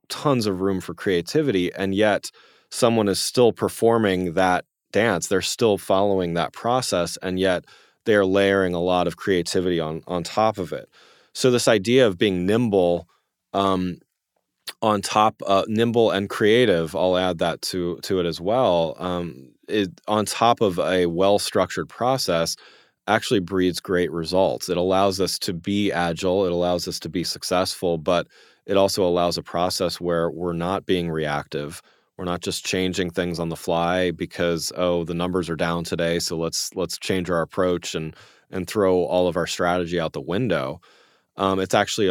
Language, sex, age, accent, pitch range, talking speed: English, male, 30-49, American, 85-95 Hz, 170 wpm